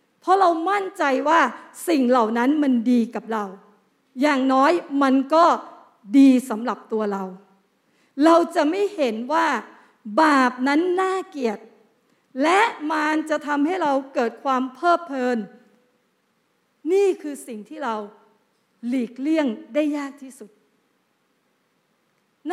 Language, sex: Thai, female